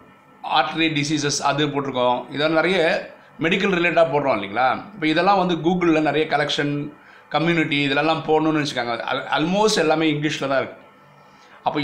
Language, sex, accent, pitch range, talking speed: Tamil, male, native, 140-170 Hz, 130 wpm